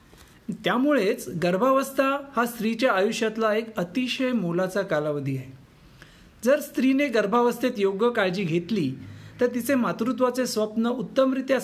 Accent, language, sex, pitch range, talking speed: native, Marathi, male, 185-255 Hz, 115 wpm